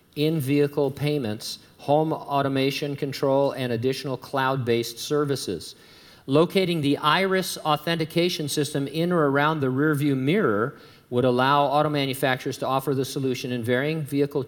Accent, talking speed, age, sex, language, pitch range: American, 130 wpm, 50-69, male, English, 120-145 Hz